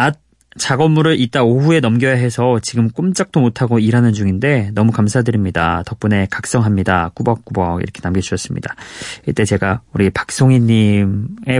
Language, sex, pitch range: Korean, male, 105-140 Hz